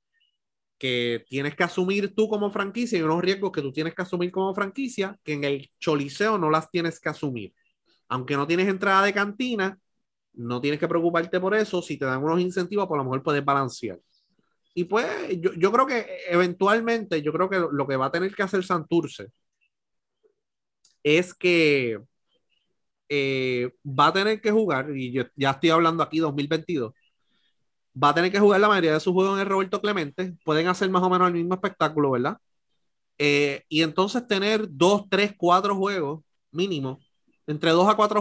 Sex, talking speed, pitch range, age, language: male, 185 wpm, 140-190 Hz, 30-49, Spanish